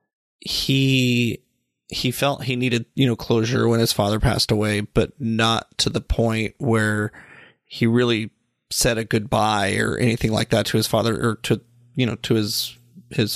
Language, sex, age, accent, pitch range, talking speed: English, male, 30-49, American, 110-125 Hz, 170 wpm